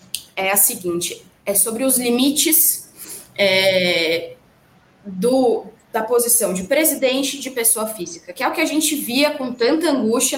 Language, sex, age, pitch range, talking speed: Portuguese, female, 20-39, 200-300 Hz, 155 wpm